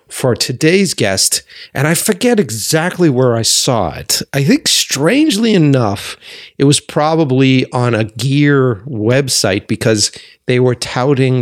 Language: English